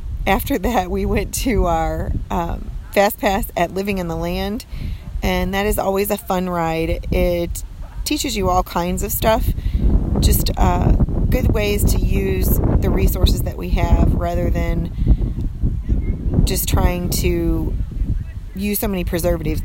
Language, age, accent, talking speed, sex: English, 30-49, American, 145 wpm, female